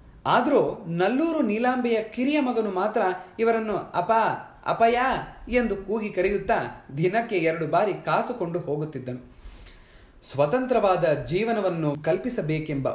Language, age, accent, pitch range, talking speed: Kannada, 20-39, native, 175-250 Hz, 95 wpm